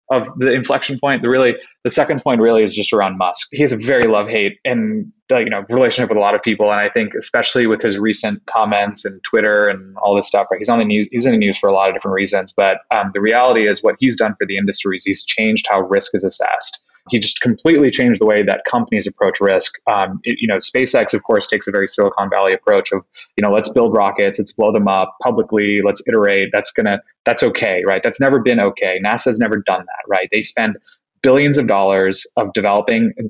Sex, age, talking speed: male, 20-39, 245 wpm